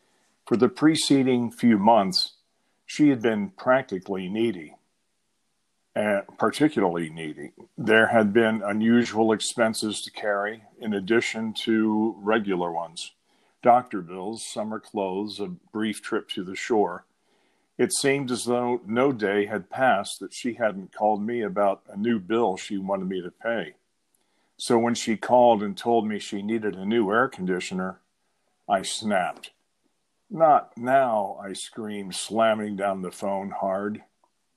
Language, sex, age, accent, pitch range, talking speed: English, male, 50-69, American, 100-120 Hz, 140 wpm